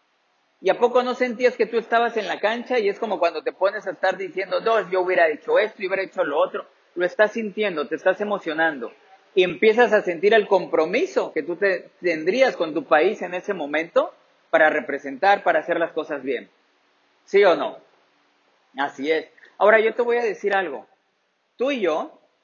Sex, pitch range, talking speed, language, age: male, 165-220 Hz, 200 wpm, Spanish, 40-59